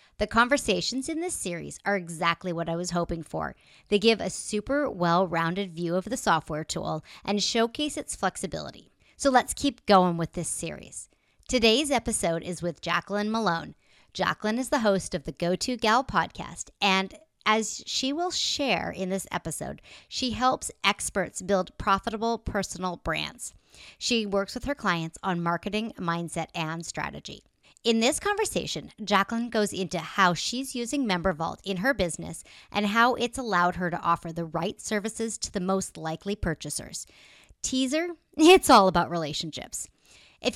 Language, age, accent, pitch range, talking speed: English, 40-59, American, 175-235 Hz, 155 wpm